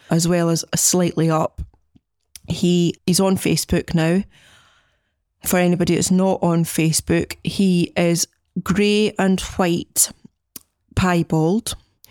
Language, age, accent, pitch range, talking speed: English, 30-49, British, 160-180 Hz, 115 wpm